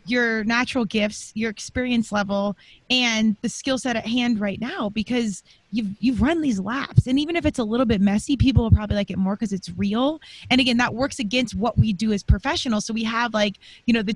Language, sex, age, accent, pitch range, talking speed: English, female, 20-39, American, 205-245 Hz, 230 wpm